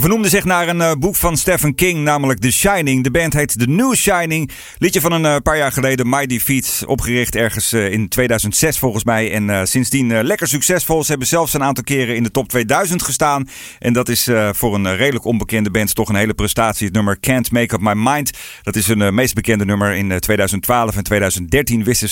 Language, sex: Dutch, male